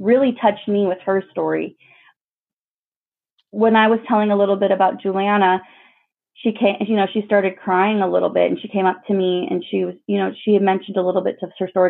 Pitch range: 185-220 Hz